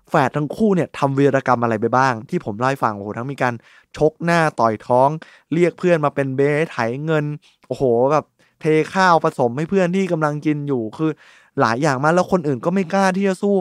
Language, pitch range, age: Thai, 125-170 Hz, 20-39